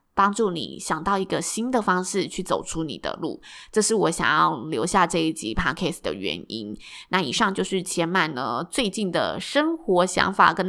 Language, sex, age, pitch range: Chinese, female, 20-39, 165-215 Hz